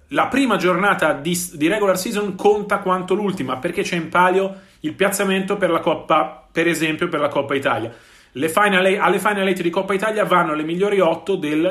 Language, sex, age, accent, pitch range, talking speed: Italian, male, 40-59, native, 155-195 Hz, 195 wpm